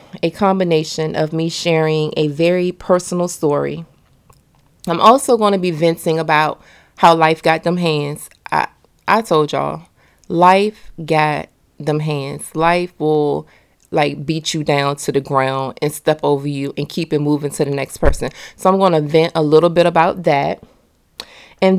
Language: English